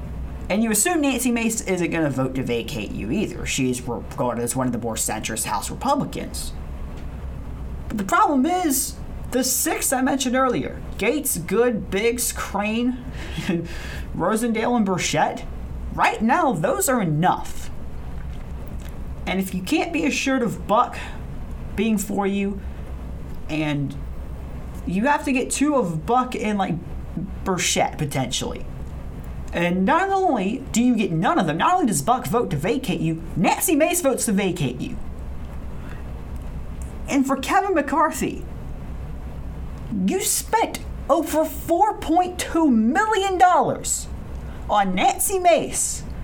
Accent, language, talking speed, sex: American, English, 130 wpm, male